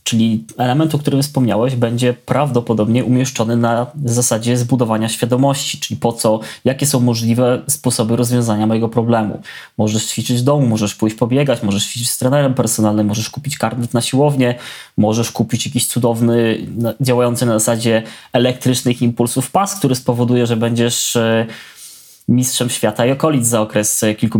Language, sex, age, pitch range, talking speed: Polish, male, 20-39, 115-130 Hz, 150 wpm